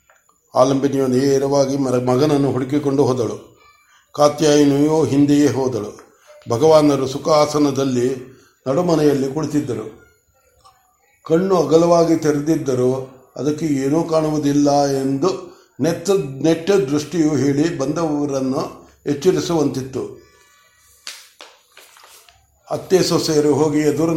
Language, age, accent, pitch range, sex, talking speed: Kannada, 60-79, native, 135-165 Hz, male, 75 wpm